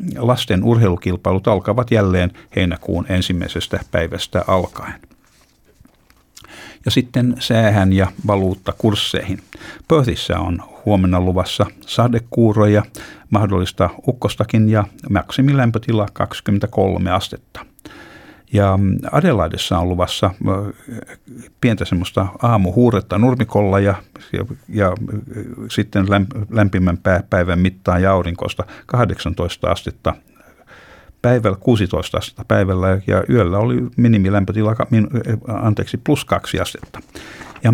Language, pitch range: Finnish, 95-110 Hz